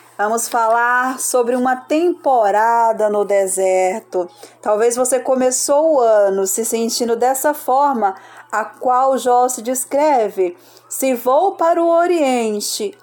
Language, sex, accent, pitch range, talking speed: Portuguese, female, Brazilian, 235-315 Hz, 120 wpm